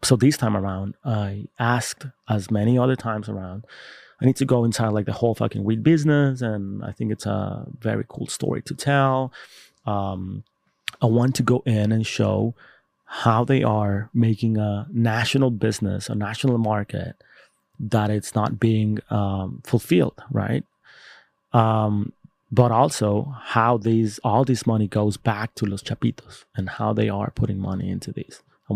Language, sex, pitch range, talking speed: English, male, 105-125 Hz, 165 wpm